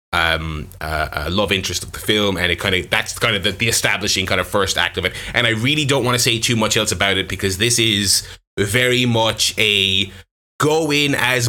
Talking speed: 235 wpm